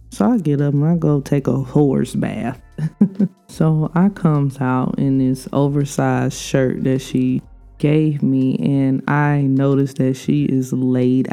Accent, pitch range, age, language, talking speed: American, 130-185 Hz, 20-39, English, 160 wpm